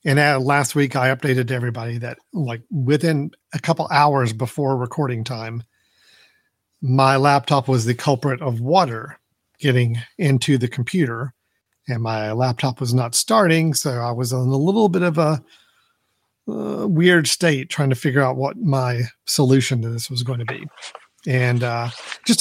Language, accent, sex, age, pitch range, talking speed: English, American, male, 40-59, 125-155 Hz, 165 wpm